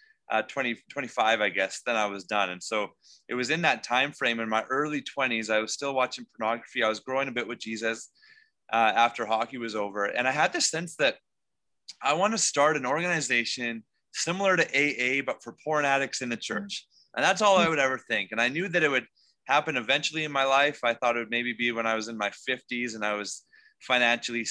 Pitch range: 115-155 Hz